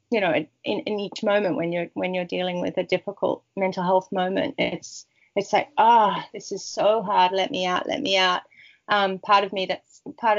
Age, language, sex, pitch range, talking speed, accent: 30-49, English, female, 185-220 Hz, 220 wpm, Australian